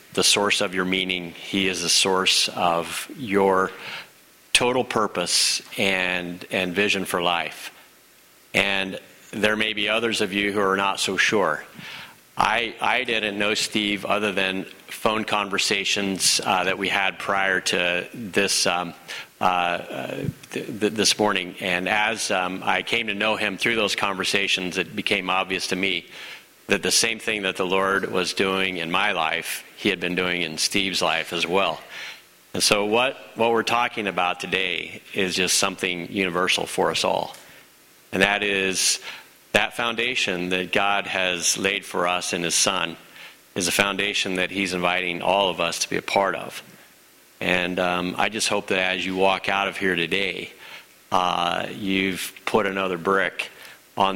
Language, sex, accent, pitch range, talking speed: English, male, American, 90-100 Hz, 170 wpm